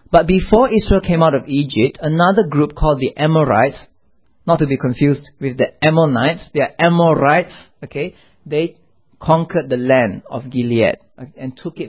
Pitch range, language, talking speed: 130-170 Hz, English, 160 wpm